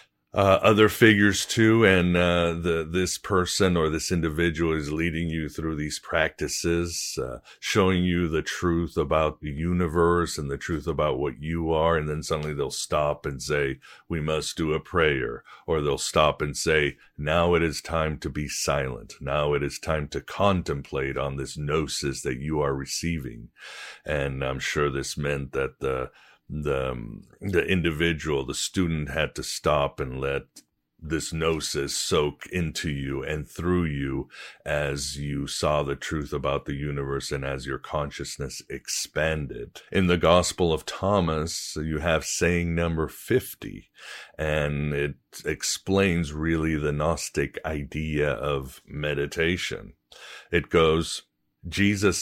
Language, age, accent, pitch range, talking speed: English, 60-79, American, 75-85 Hz, 150 wpm